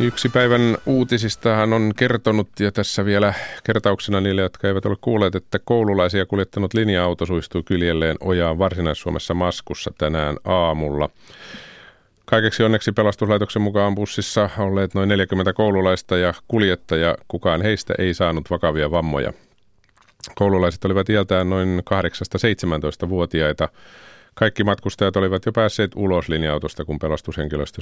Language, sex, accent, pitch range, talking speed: Finnish, male, native, 85-105 Hz, 120 wpm